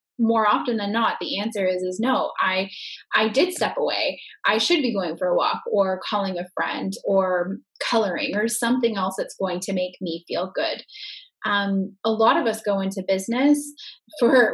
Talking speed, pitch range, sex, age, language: 190 wpm, 185-240 Hz, female, 10-29, English